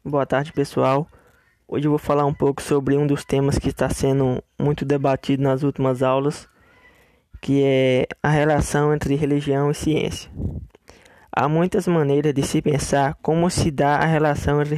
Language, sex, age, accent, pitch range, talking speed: Portuguese, male, 20-39, Brazilian, 135-150 Hz, 165 wpm